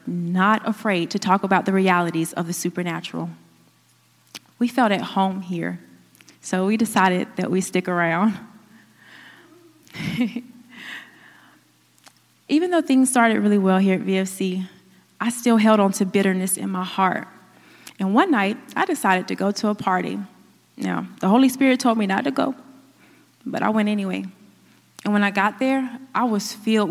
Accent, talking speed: American, 160 wpm